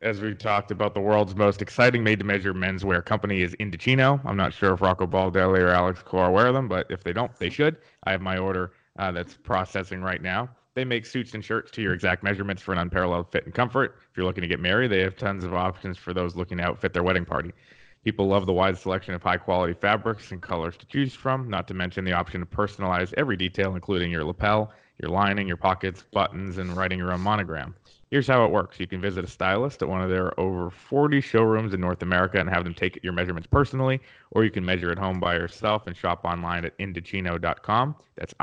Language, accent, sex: English, American, male